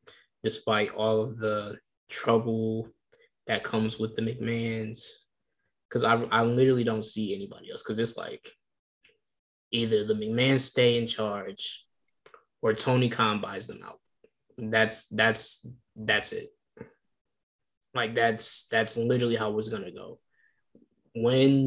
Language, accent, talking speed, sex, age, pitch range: English, American, 130 wpm, male, 10-29, 110-150 Hz